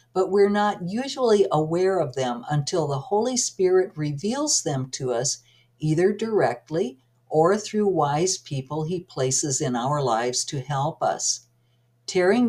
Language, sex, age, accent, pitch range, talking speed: English, female, 60-79, American, 130-195 Hz, 145 wpm